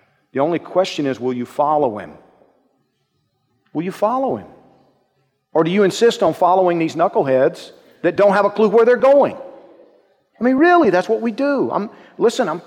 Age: 40-59